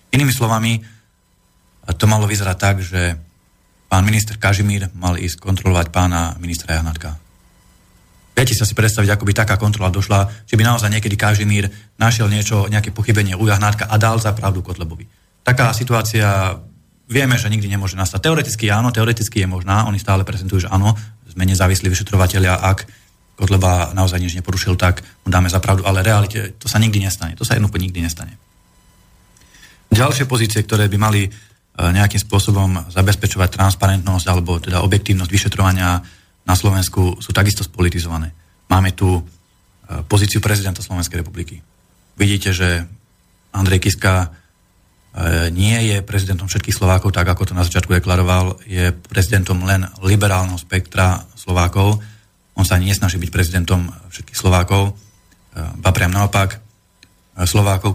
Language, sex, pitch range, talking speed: Slovak, male, 90-105 Hz, 145 wpm